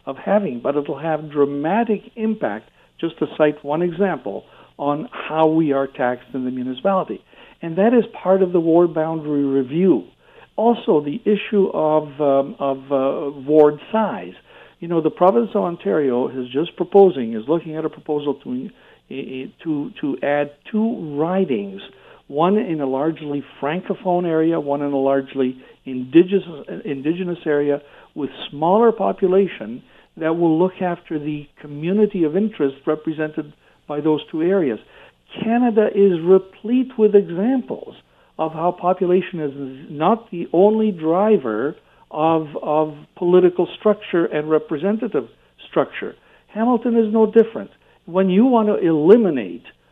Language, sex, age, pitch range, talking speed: English, male, 60-79, 150-205 Hz, 145 wpm